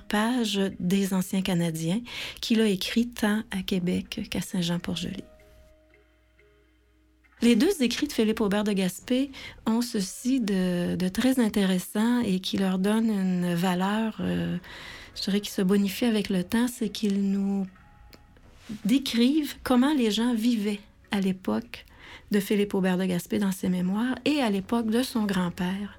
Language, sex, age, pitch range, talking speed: French, female, 40-59, 185-225 Hz, 150 wpm